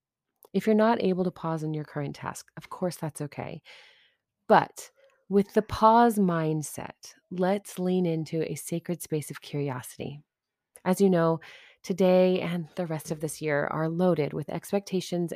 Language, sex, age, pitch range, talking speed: English, female, 30-49, 155-195 Hz, 160 wpm